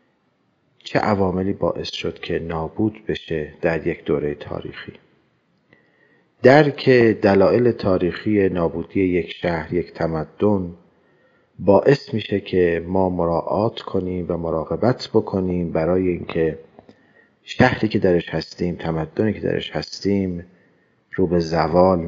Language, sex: Persian, male